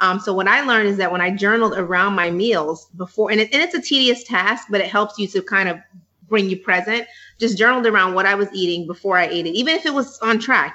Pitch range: 180-215 Hz